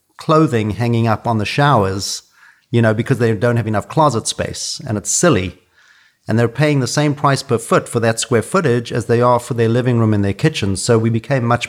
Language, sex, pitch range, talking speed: English, male, 100-120 Hz, 225 wpm